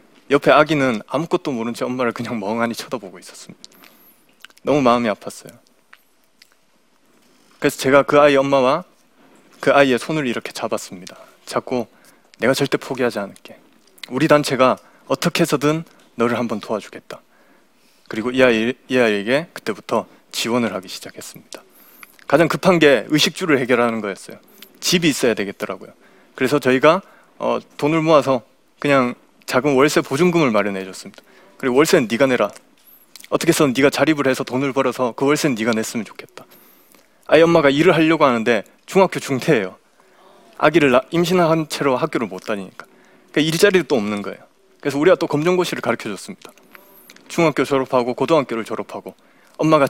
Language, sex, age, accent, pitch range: Korean, male, 20-39, native, 120-160 Hz